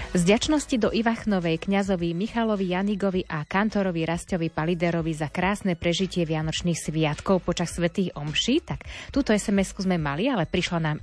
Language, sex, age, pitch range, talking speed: Slovak, female, 30-49, 170-215 Hz, 140 wpm